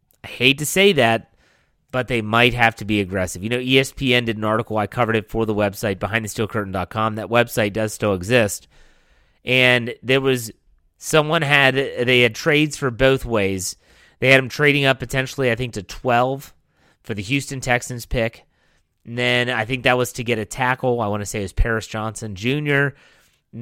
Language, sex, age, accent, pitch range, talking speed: English, male, 30-49, American, 105-130 Hz, 195 wpm